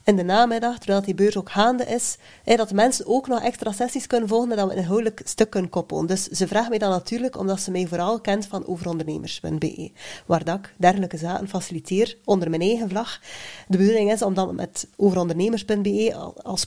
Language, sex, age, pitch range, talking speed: English, female, 30-49, 185-230 Hz, 200 wpm